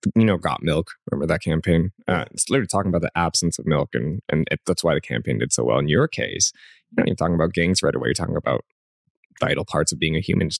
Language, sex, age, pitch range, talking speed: English, male, 20-39, 85-115 Hz, 260 wpm